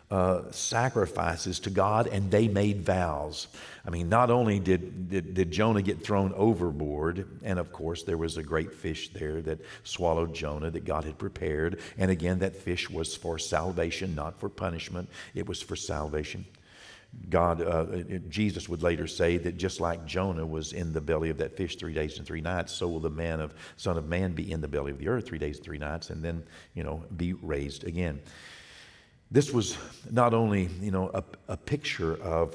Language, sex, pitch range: English, male, 80-105 Hz